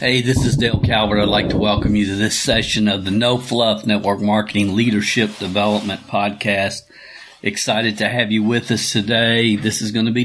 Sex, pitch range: male, 95-110 Hz